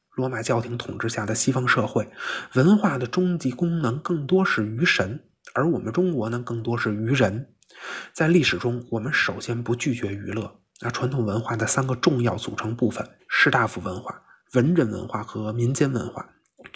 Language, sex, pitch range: Chinese, male, 115-155 Hz